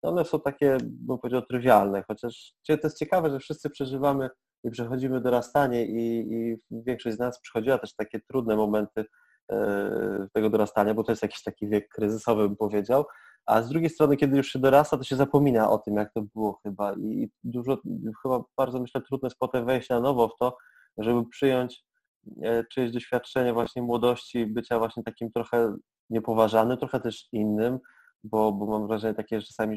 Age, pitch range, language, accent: 20-39, 110-135 Hz, Polish, native